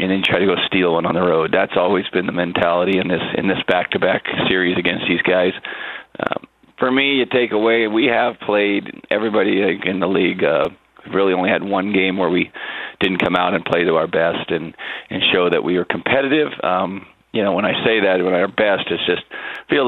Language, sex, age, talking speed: English, male, 40-59, 220 wpm